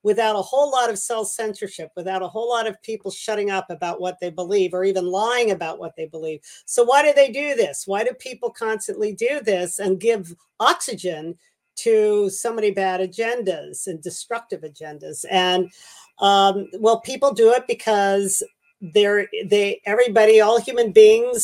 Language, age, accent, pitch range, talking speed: English, 50-69, American, 195-235 Hz, 170 wpm